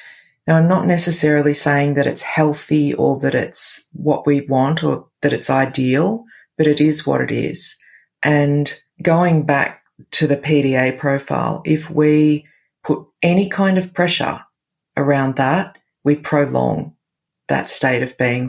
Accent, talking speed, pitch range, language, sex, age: Australian, 150 wpm, 140-160 Hz, English, female, 30-49